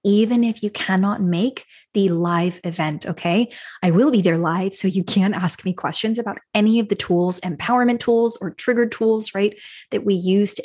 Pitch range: 175-225 Hz